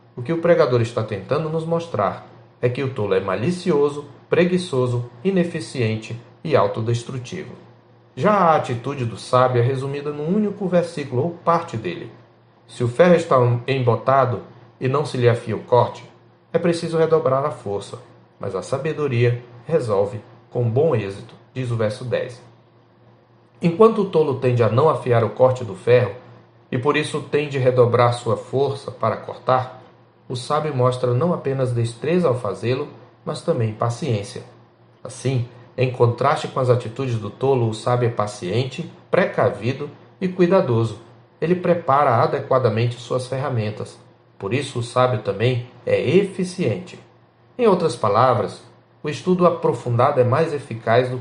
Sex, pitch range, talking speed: male, 120-150 Hz, 150 wpm